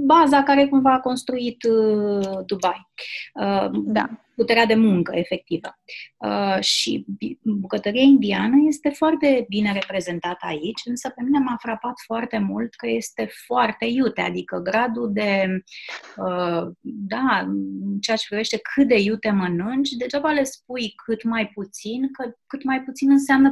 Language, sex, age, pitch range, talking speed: Romanian, female, 30-49, 185-240 Hz, 145 wpm